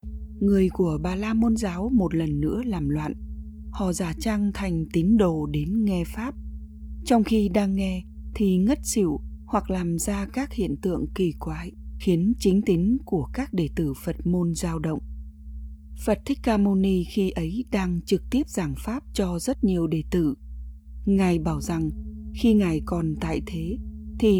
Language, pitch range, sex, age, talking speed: Vietnamese, 135-200 Hz, female, 20-39, 175 wpm